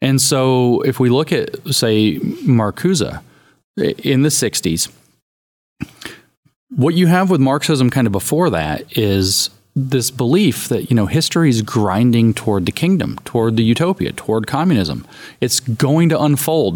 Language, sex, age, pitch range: English, male, 40-59, 105-140 Hz